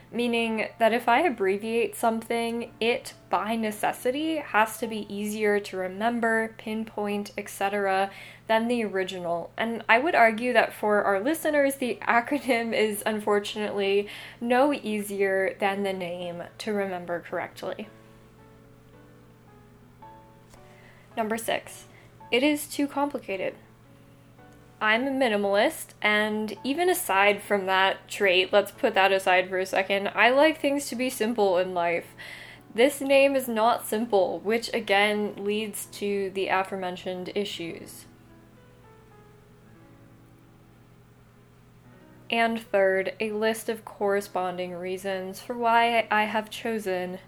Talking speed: 120 wpm